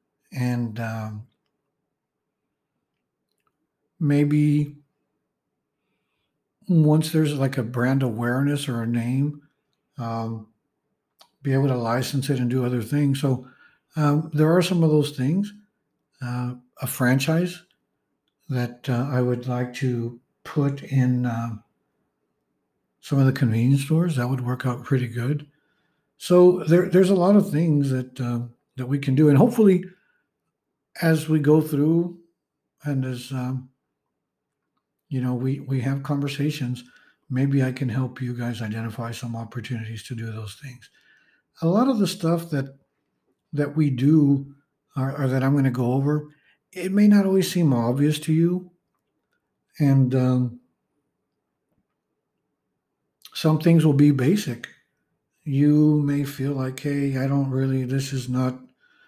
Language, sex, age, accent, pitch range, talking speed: English, male, 60-79, American, 125-155 Hz, 140 wpm